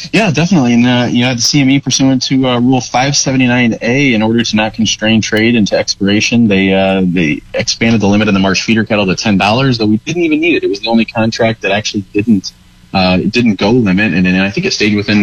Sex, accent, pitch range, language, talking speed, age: male, American, 95-115 Hz, English, 265 wpm, 20-39